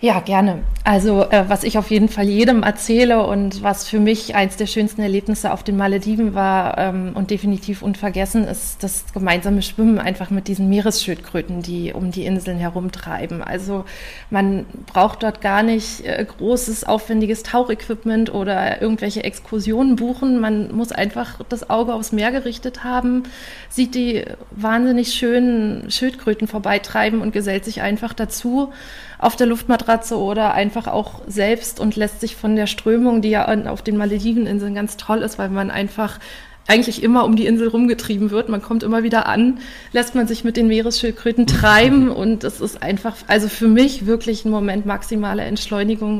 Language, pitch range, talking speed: German, 195-230 Hz, 170 wpm